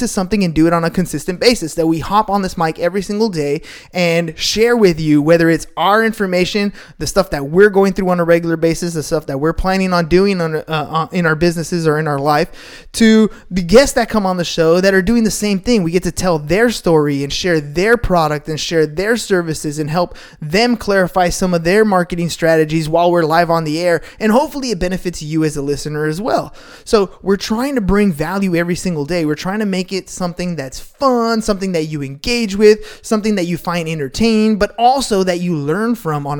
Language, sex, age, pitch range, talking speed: English, male, 20-39, 160-205 Hz, 225 wpm